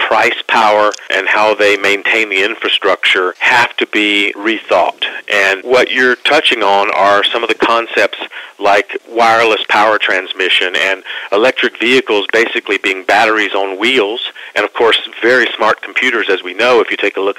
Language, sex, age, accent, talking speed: English, male, 50-69, American, 165 wpm